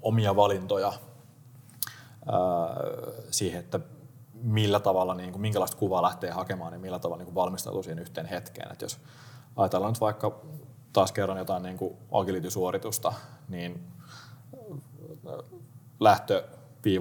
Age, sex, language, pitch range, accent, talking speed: 30-49, male, Finnish, 100-125 Hz, native, 125 wpm